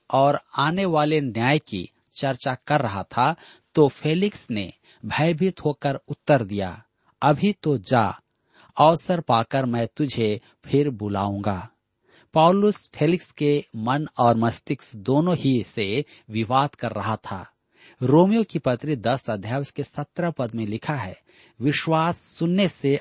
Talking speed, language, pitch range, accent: 135 wpm, Hindi, 110-150 Hz, native